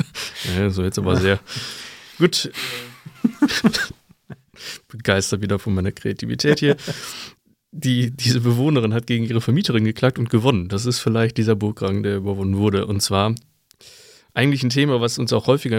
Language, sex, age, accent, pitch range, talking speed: German, male, 20-39, German, 100-125 Hz, 140 wpm